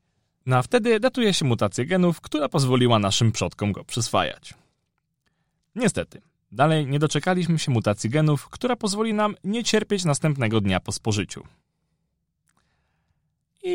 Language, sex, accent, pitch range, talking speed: Polish, male, native, 110-180 Hz, 130 wpm